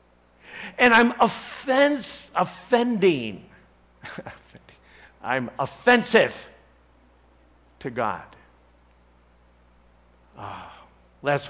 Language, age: English, 60-79